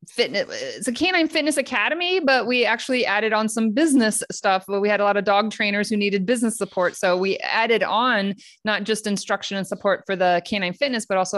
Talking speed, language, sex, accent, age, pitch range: 215 wpm, English, female, American, 20-39, 180-220 Hz